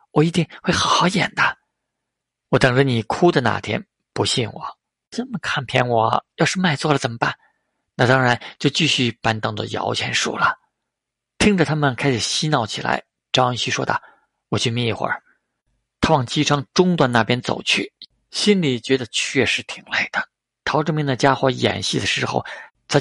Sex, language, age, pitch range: male, Chinese, 50-69, 125-155 Hz